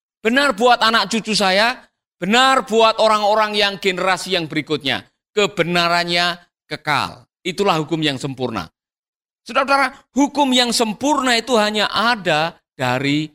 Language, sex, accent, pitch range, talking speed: Indonesian, male, native, 175-250 Hz, 115 wpm